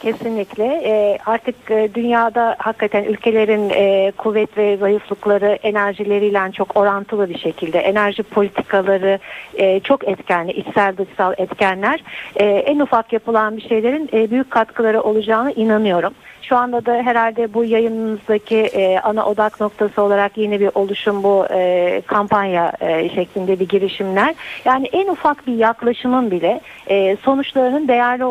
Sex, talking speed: female, 115 wpm